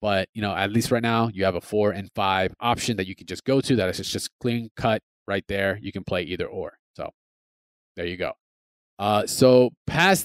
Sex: male